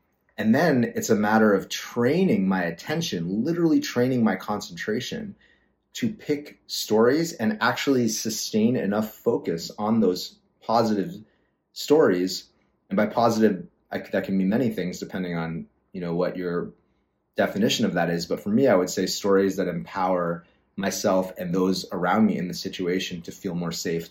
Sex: male